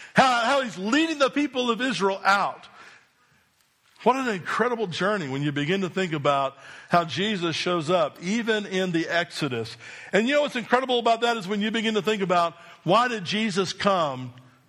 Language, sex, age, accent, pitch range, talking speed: English, male, 50-69, American, 150-215 Hz, 185 wpm